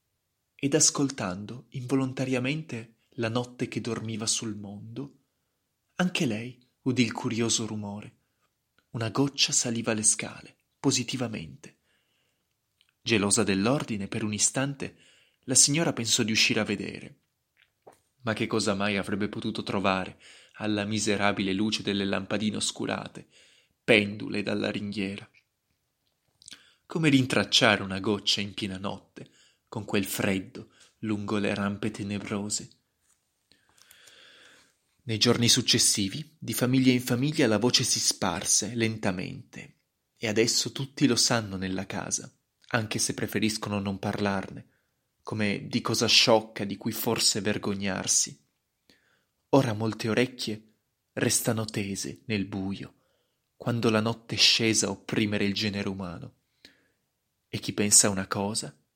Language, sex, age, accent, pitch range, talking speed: Italian, male, 20-39, native, 105-125 Hz, 120 wpm